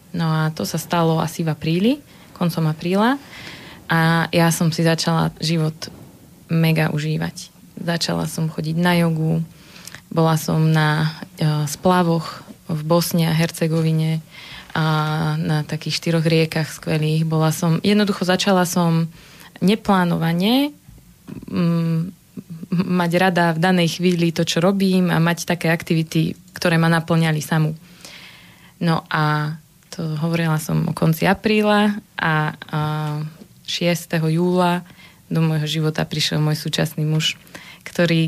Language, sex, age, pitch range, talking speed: Slovak, female, 20-39, 160-175 Hz, 125 wpm